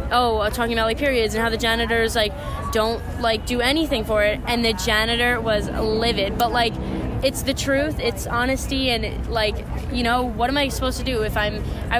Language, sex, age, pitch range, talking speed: English, female, 10-29, 210-245 Hz, 205 wpm